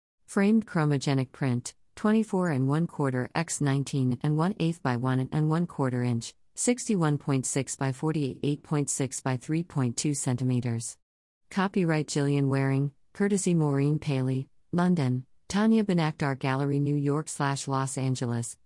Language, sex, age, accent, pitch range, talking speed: English, female, 50-69, American, 130-170 Hz, 110 wpm